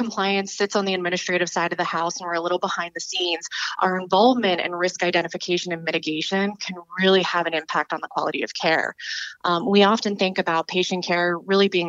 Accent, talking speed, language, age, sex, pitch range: American, 210 wpm, English, 20-39, female, 170-195 Hz